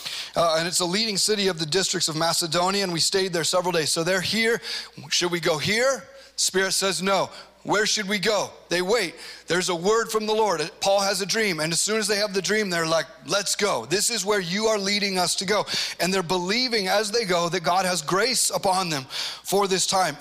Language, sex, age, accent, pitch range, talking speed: English, male, 30-49, American, 175-210 Hz, 235 wpm